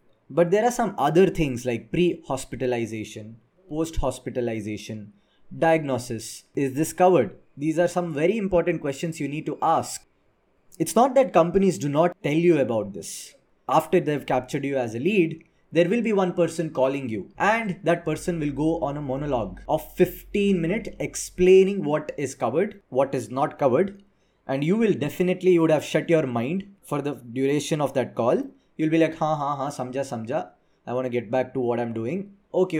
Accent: Indian